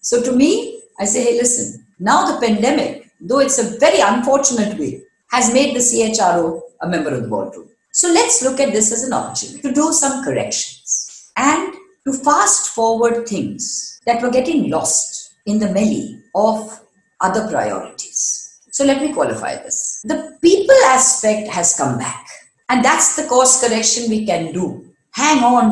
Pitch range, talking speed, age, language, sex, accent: 230-300 Hz, 170 wpm, 50-69, English, female, Indian